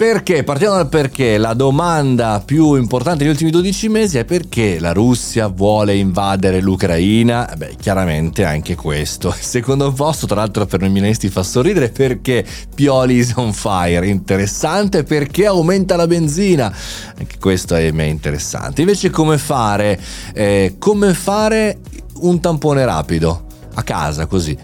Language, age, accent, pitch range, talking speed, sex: Italian, 30-49, native, 95-160 Hz, 145 wpm, male